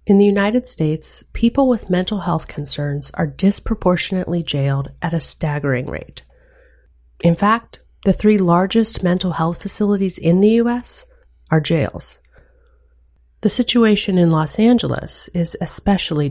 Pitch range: 150-200 Hz